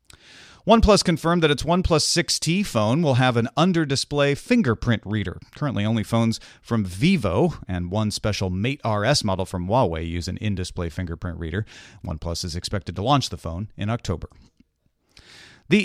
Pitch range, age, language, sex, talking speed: 100-145 Hz, 40-59, English, male, 155 wpm